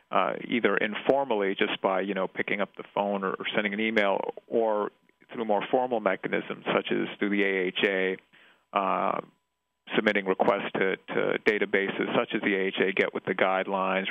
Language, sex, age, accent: English, male, 40-59, American